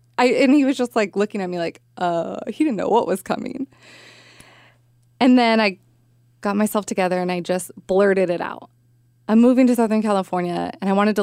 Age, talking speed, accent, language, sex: 20-39, 205 wpm, American, English, female